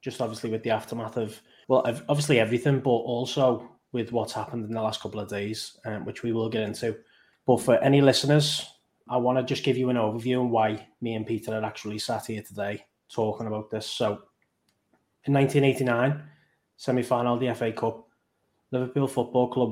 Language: English